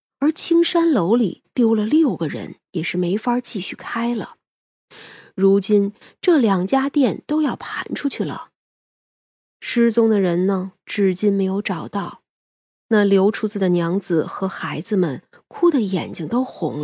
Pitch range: 180-245 Hz